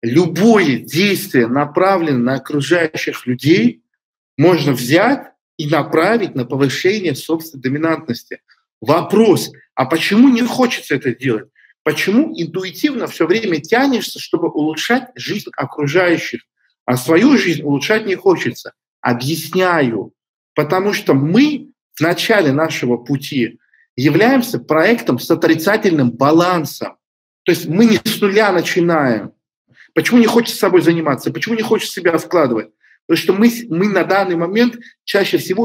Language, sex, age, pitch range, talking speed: Russian, male, 50-69, 140-210 Hz, 125 wpm